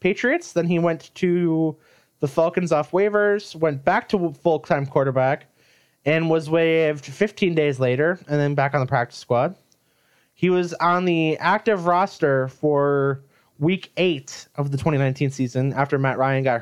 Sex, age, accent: male, 20-39, American